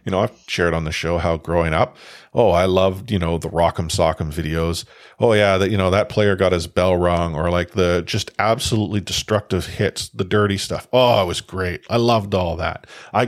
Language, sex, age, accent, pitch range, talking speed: English, male, 40-59, American, 85-110 Hz, 220 wpm